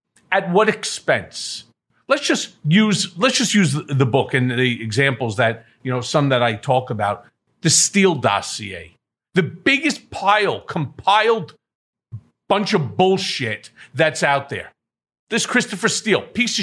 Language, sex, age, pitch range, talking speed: English, male, 40-59, 140-205 Hz, 140 wpm